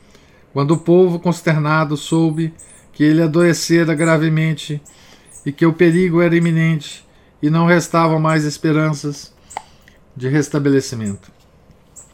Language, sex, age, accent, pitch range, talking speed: Portuguese, male, 50-69, Brazilian, 145-170 Hz, 110 wpm